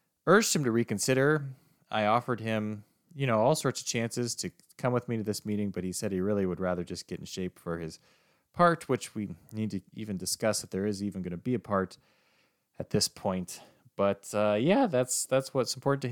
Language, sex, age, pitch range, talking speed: English, male, 30-49, 100-135 Hz, 225 wpm